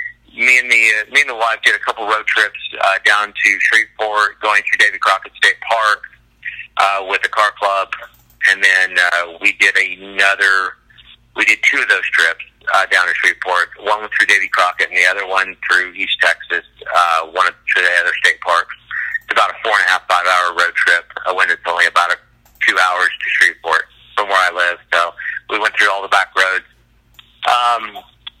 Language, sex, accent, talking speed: English, male, American, 200 wpm